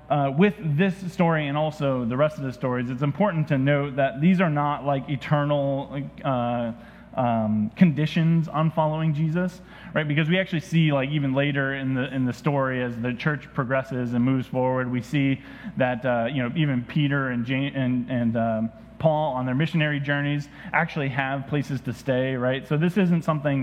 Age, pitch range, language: 20-39, 130-165 Hz, English